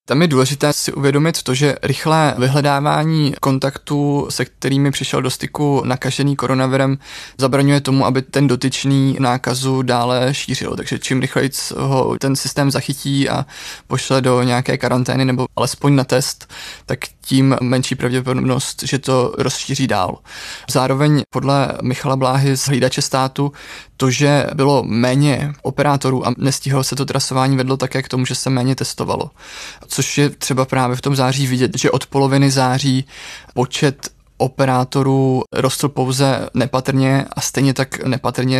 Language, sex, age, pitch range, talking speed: Czech, male, 20-39, 130-140 Hz, 150 wpm